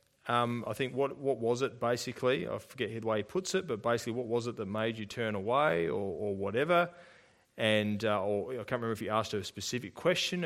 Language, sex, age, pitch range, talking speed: English, male, 30-49, 110-160 Hz, 235 wpm